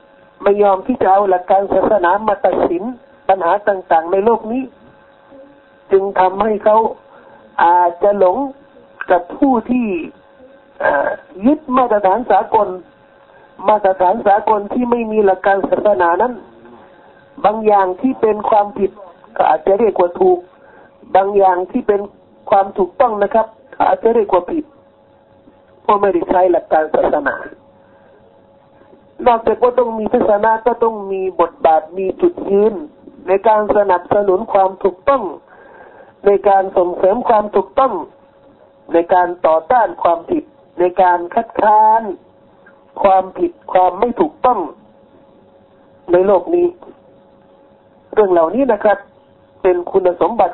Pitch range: 185-255 Hz